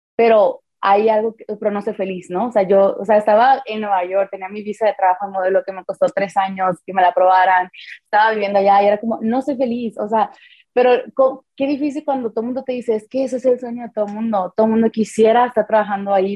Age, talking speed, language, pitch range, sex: 20-39, 265 wpm, Spanish, 195-225 Hz, female